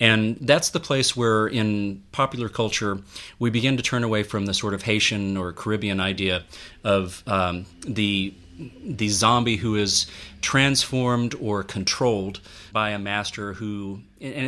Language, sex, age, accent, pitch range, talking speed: English, male, 40-59, American, 95-120 Hz, 150 wpm